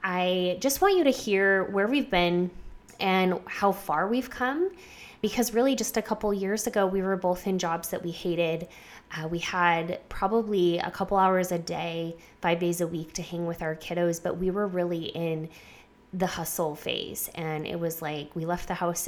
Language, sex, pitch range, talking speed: English, female, 170-195 Hz, 200 wpm